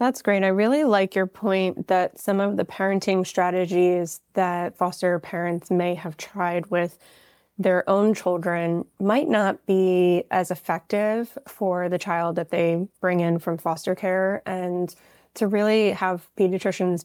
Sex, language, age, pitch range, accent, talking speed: female, English, 20-39, 175-200 Hz, American, 150 wpm